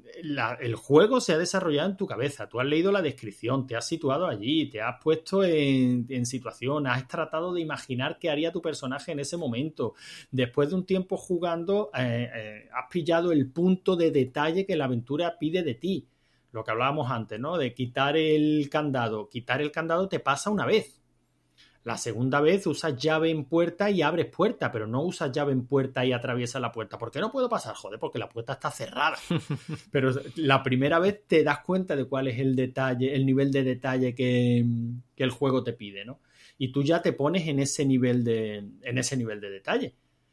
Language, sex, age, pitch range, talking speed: Spanish, male, 30-49, 125-170 Hz, 205 wpm